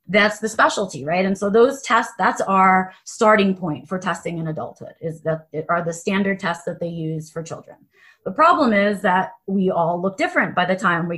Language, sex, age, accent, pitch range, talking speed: English, female, 30-49, American, 175-220 Hz, 215 wpm